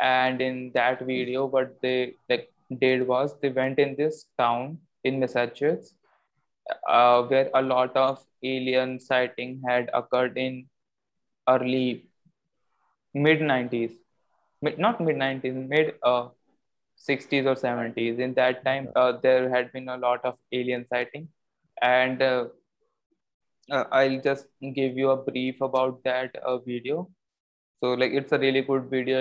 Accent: Indian